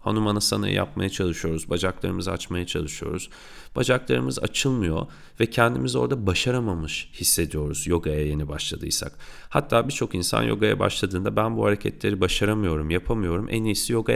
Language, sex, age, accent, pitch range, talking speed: Turkish, male, 40-59, native, 85-125 Hz, 125 wpm